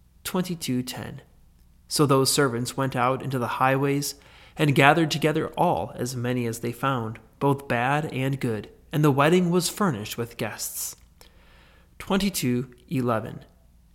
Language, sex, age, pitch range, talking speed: English, male, 30-49, 120-150 Hz, 125 wpm